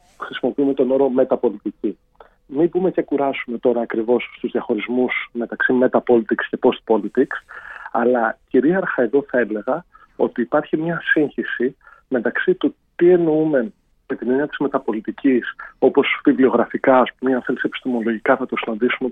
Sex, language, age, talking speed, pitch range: male, Greek, 40-59, 135 wpm, 120-150 Hz